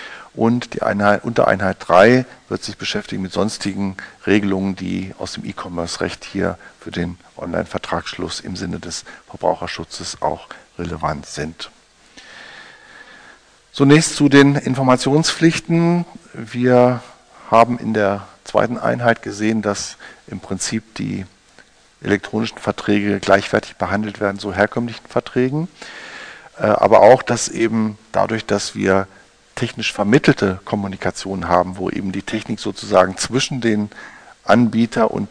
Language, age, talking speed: German, 50-69, 120 wpm